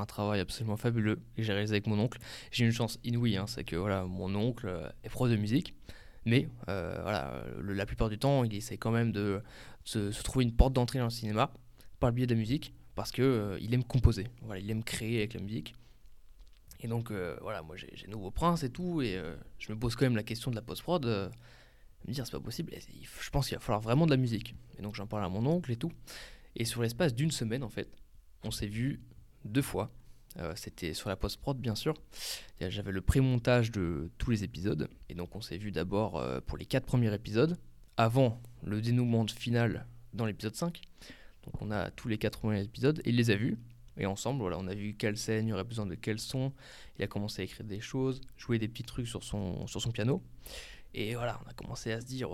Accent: French